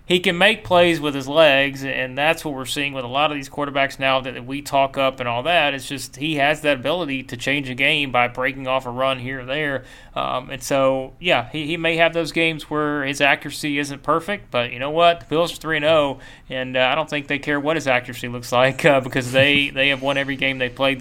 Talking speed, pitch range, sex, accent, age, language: 255 wpm, 125-150 Hz, male, American, 30-49, English